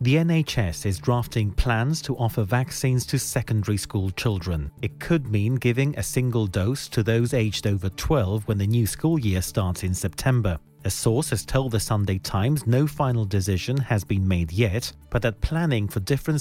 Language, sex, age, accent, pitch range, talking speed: English, male, 40-59, British, 110-180 Hz, 185 wpm